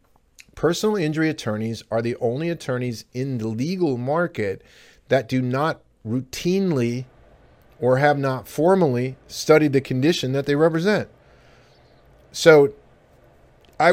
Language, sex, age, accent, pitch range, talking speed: English, male, 40-59, American, 115-150 Hz, 115 wpm